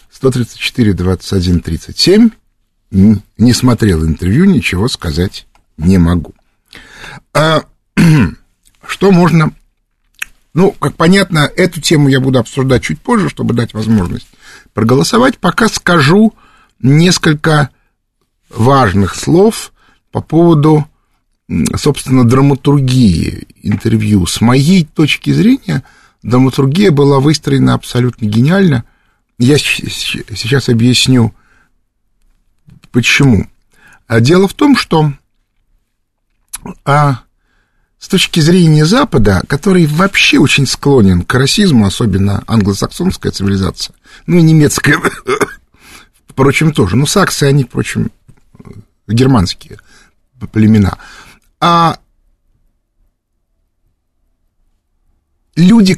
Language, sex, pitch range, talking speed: Russian, male, 100-155 Hz, 85 wpm